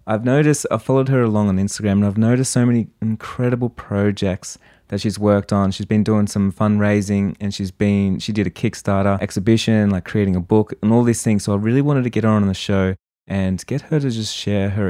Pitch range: 100-120 Hz